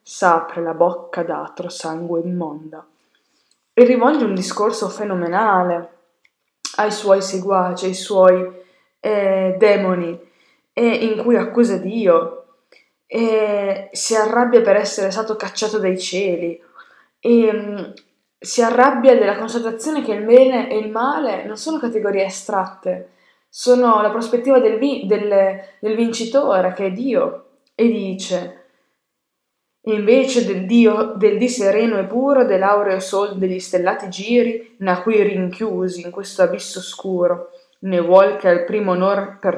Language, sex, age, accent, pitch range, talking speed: Italian, female, 20-39, native, 180-225 Hz, 135 wpm